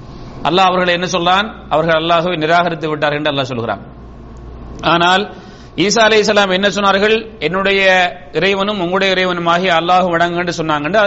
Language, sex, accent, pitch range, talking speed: English, male, Indian, 170-210 Hz, 145 wpm